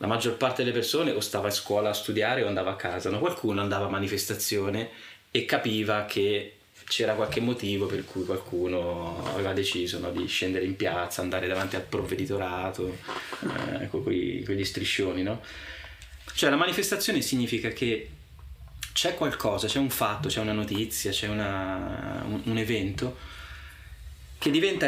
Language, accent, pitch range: Italian, native, 95-115 Hz